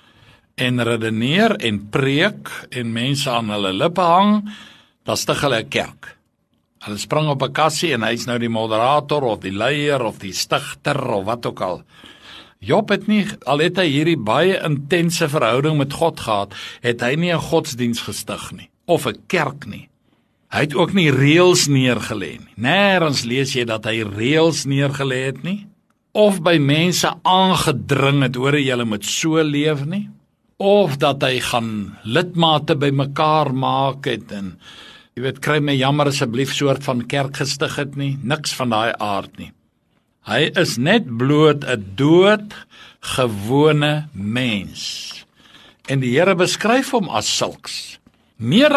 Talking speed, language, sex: 155 wpm, English, male